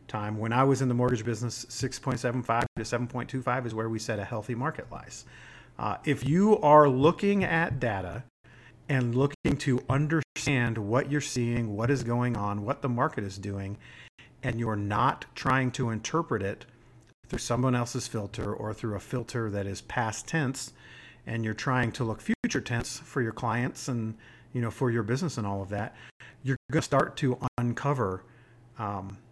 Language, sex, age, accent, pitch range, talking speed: English, male, 40-59, American, 115-135 Hz, 180 wpm